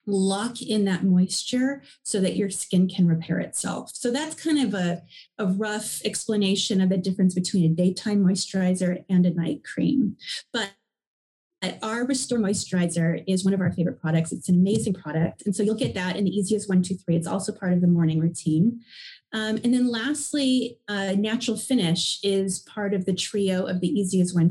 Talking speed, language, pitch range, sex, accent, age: 190 wpm, English, 180-215 Hz, female, American, 30-49